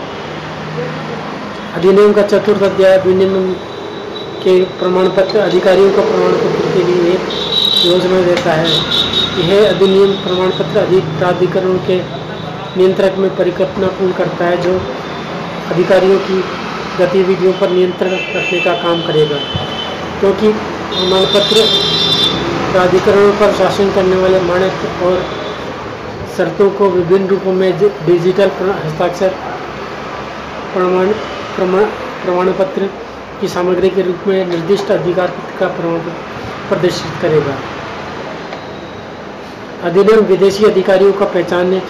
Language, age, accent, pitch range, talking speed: Hindi, 40-59, native, 180-195 Hz, 70 wpm